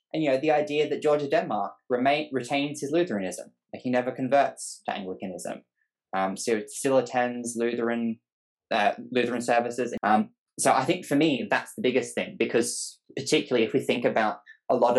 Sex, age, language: male, 20-39, English